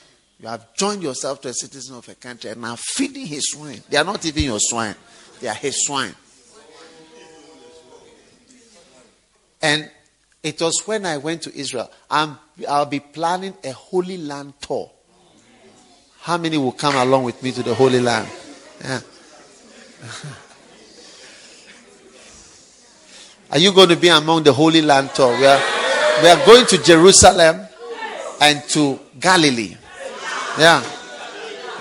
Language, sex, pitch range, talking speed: English, male, 135-175 Hz, 135 wpm